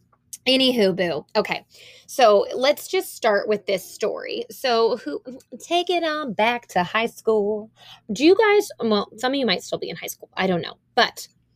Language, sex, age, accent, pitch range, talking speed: English, female, 20-39, American, 185-250 Hz, 185 wpm